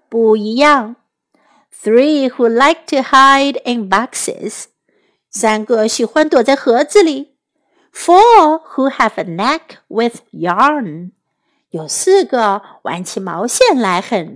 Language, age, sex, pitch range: Chinese, 50-69, female, 220-310 Hz